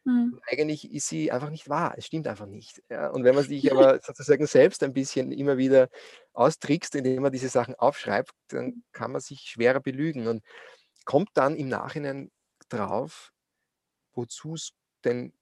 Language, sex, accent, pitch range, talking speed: German, male, German, 130-170 Hz, 165 wpm